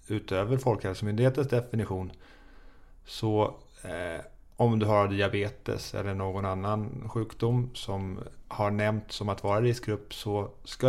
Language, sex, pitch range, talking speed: Swedish, male, 95-115 Hz, 125 wpm